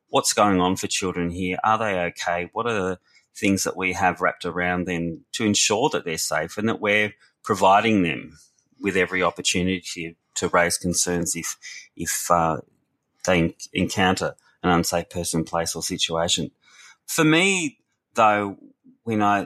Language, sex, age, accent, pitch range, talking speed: English, male, 30-49, Australian, 85-95 Hz, 155 wpm